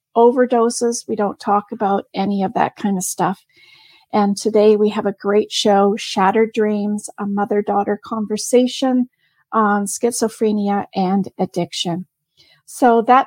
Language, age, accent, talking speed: English, 40-59, American, 130 wpm